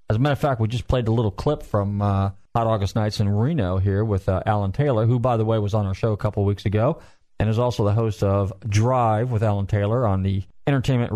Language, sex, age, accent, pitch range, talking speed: English, male, 40-59, American, 95-120 Hz, 260 wpm